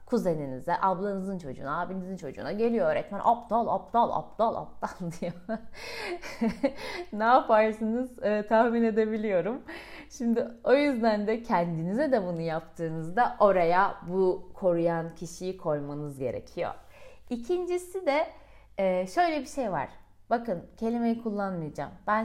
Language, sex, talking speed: Turkish, female, 110 wpm